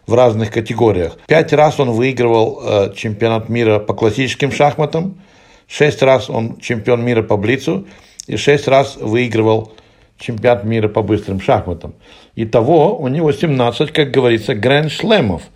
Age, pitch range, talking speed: 60-79, 110-140 Hz, 140 wpm